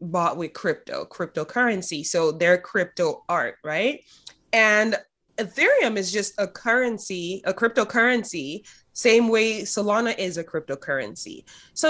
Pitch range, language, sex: 180-235 Hz, English, female